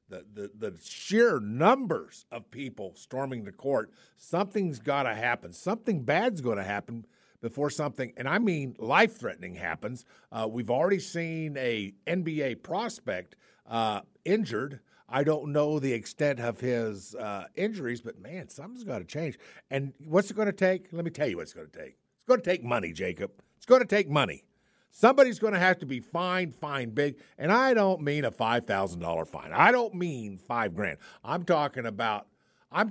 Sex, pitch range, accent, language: male, 120-180 Hz, American, English